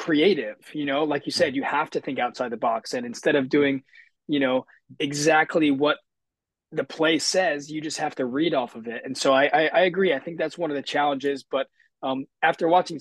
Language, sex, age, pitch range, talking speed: English, male, 20-39, 135-165 Hz, 225 wpm